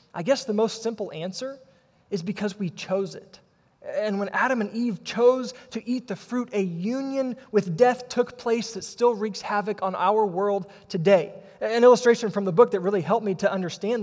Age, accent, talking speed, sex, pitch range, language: 20-39, American, 195 wpm, male, 190-230 Hz, English